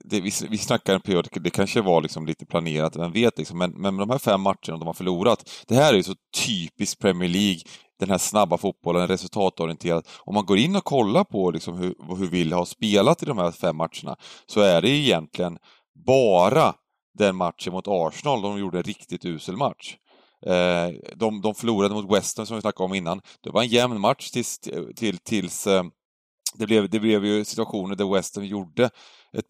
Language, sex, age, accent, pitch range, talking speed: Swedish, male, 30-49, native, 85-105 Hz, 200 wpm